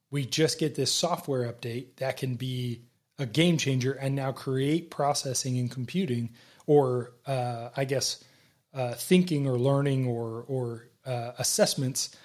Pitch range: 125-150 Hz